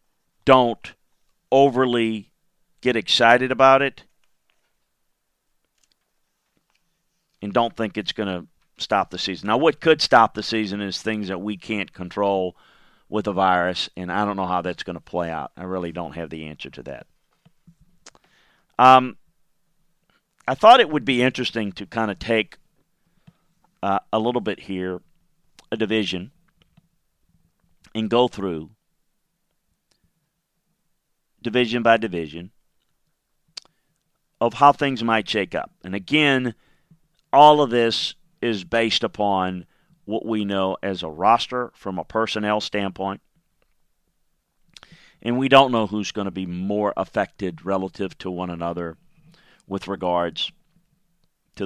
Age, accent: 40-59, American